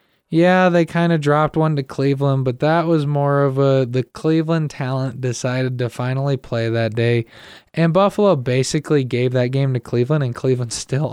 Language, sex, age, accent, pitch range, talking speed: English, male, 20-39, American, 130-160 Hz, 185 wpm